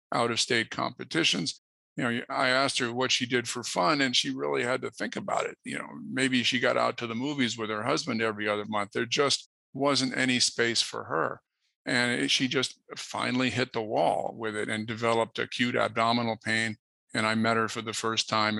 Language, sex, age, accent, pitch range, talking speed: English, male, 50-69, American, 110-125 Hz, 215 wpm